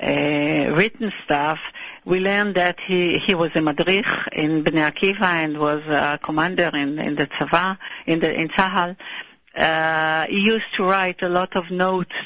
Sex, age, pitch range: female, 60-79, 165-190 Hz